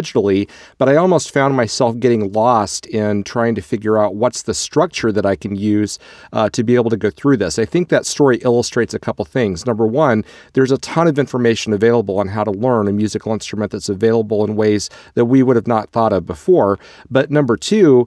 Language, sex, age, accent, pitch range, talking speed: English, male, 40-59, American, 105-130 Hz, 215 wpm